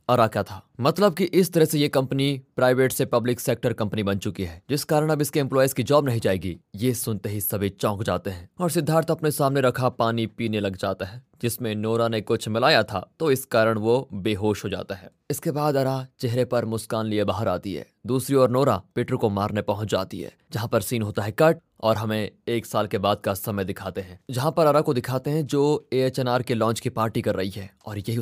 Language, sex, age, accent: Hindi, male, 20-39, native